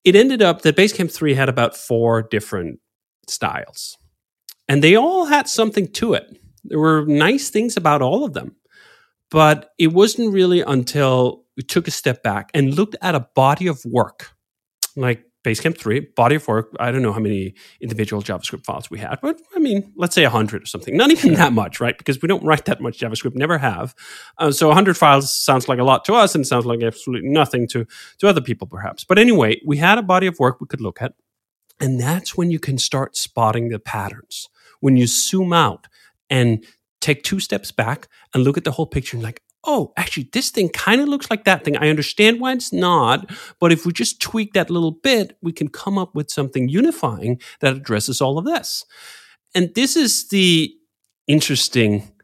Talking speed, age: 205 wpm, 30-49